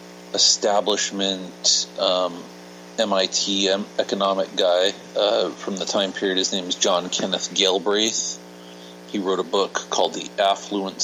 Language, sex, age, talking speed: English, male, 40-59, 125 wpm